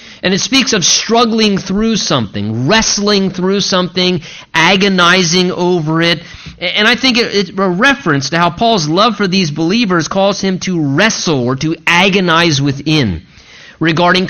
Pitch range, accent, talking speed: 150-210 Hz, American, 145 wpm